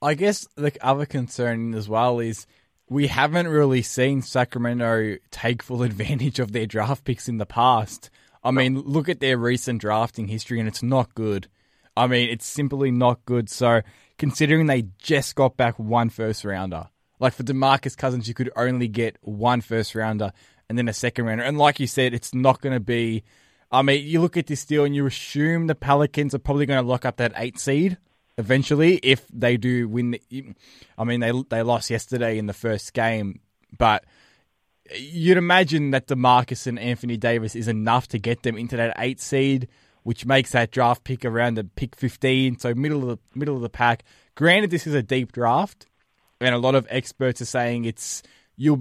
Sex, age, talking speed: male, 20-39, 195 wpm